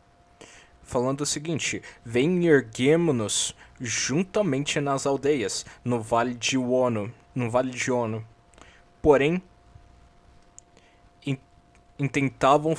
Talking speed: 90 wpm